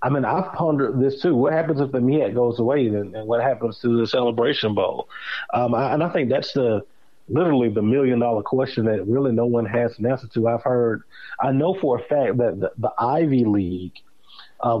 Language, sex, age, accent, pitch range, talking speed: English, male, 30-49, American, 115-135 Hz, 220 wpm